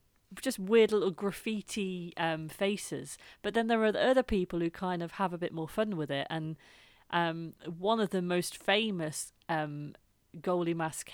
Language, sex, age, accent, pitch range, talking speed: English, female, 30-49, British, 160-195 Hz, 175 wpm